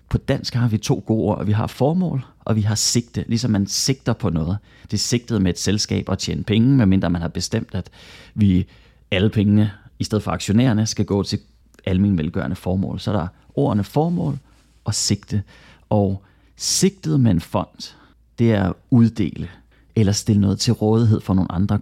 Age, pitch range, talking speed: 30-49, 95-120 Hz, 190 wpm